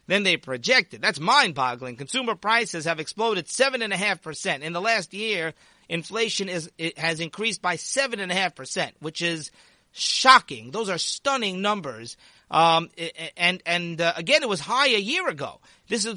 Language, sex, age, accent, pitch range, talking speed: English, male, 40-59, American, 165-220 Hz, 185 wpm